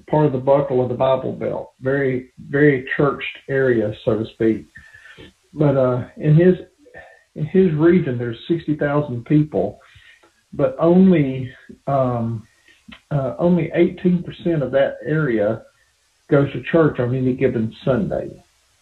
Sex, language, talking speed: male, English, 130 wpm